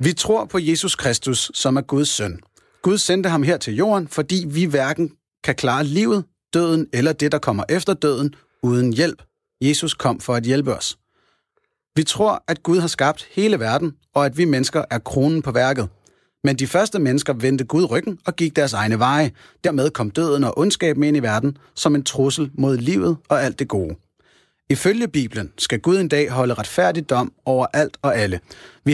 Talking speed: 195 wpm